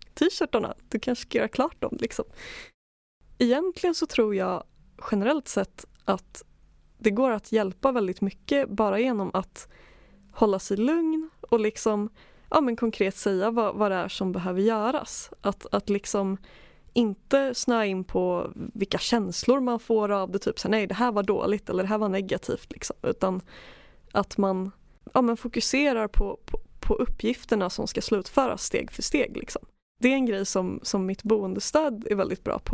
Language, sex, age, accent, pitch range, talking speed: Swedish, female, 20-39, native, 195-245 Hz, 175 wpm